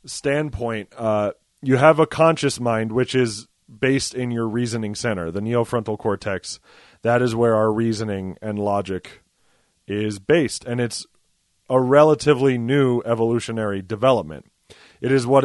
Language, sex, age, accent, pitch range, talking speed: English, male, 30-49, American, 110-135 Hz, 140 wpm